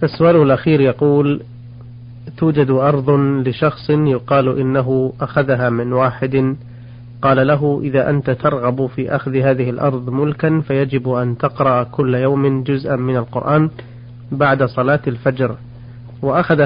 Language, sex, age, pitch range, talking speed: Arabic, male, 40-59, 120-140 Hz, 120 wpm